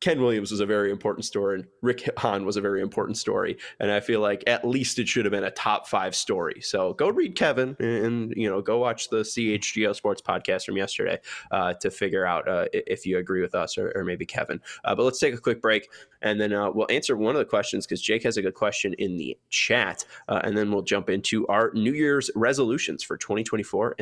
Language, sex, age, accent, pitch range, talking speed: English, male, 20-39, American, 105-130 Hz, 235 wpm